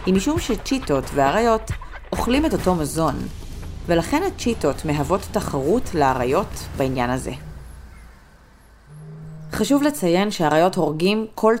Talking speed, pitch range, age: 105 wpm, 150-215 Hz, 30-49